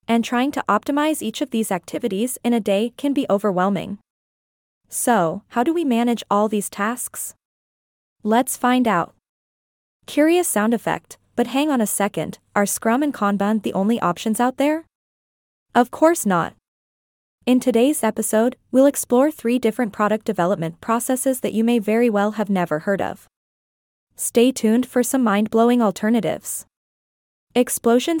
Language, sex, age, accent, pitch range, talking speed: English, female, 20-39, American, 205-255 Hz, 150 wpm